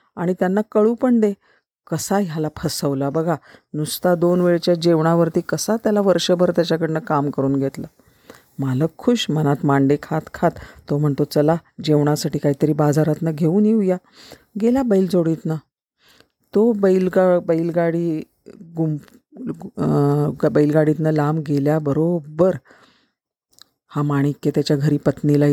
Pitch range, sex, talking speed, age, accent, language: 150-185 Hz, female, 115 wpm, 40-59, native, Marathi